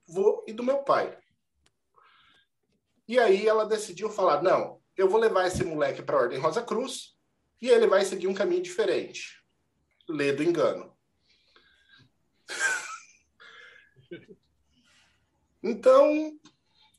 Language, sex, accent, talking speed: Portuguese, male, Brazilian, 110 wpm